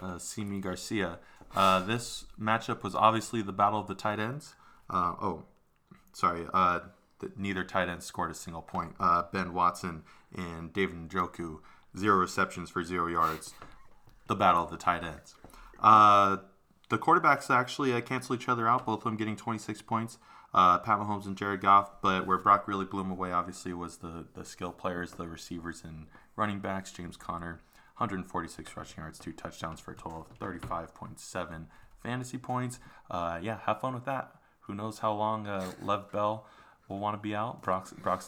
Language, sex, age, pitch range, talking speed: English, male, 20-39, 90-105 Hz, 180 wpm